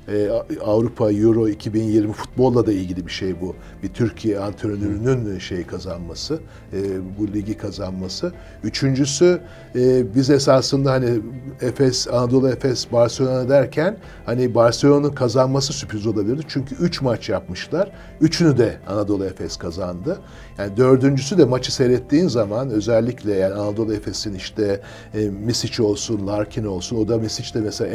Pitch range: 110-135 Hz